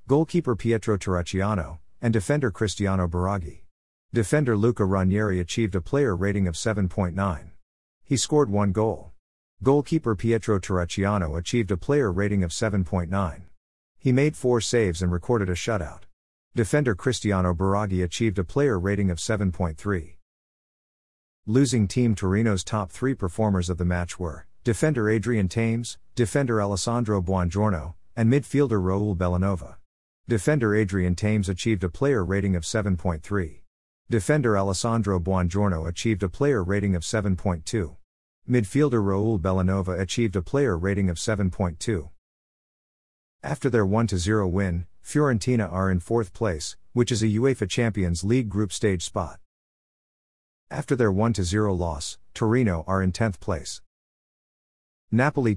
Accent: American